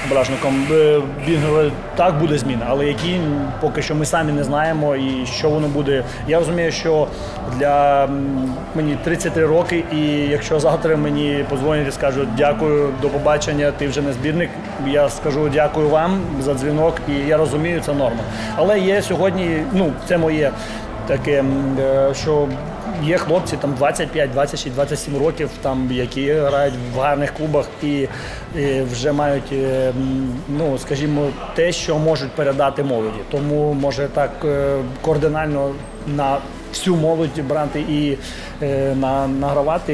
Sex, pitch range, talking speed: male, 135-155 Hz, 135 wpm